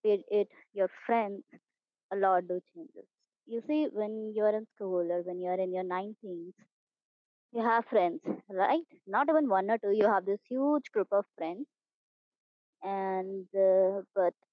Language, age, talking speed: Hindi, 20-39, 175 wpm